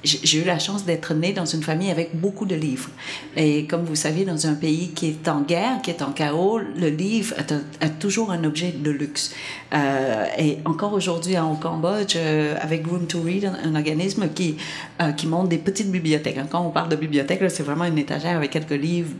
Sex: female